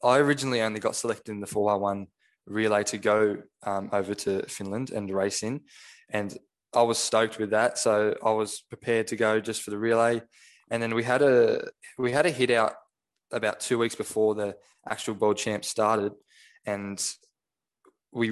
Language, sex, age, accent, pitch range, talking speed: English, male, 10-29, Australian, 105-115 Hz, 185 wpm